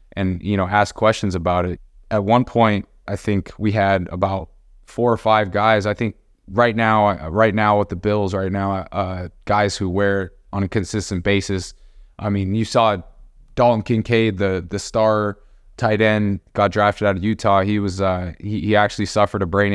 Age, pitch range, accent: 20-39, 95-105 Hz, American